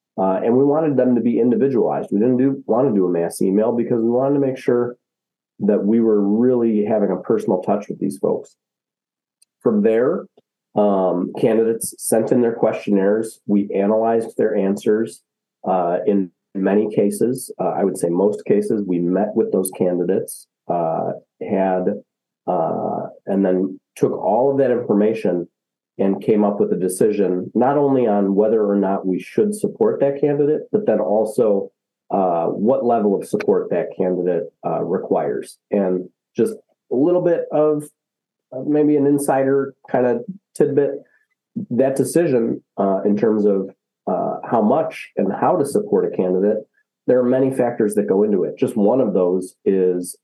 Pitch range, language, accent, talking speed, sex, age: 95-135 Hz, English, American, 165 wpm, male, 40-59